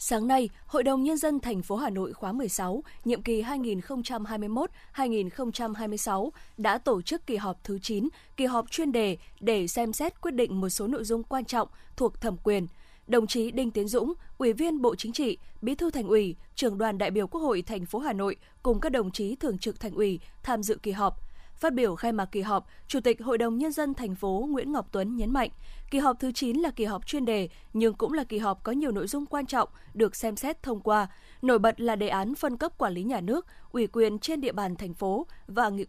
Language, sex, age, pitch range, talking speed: Vietnamese, female, 20-39, 210-260 Hz, 235 wpm